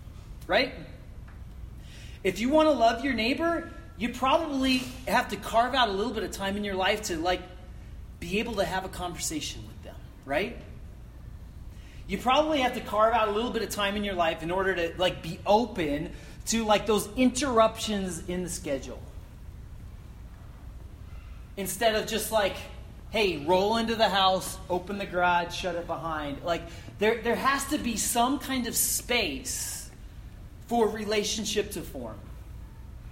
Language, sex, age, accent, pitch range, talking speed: English, male, 30-49, American, 145-220 Hz, 160 wpm